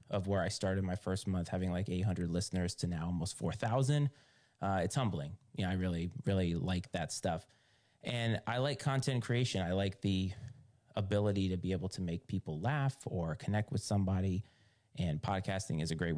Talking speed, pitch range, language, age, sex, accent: 185 wpm, 90-115 Hz, English, 30-49, male, American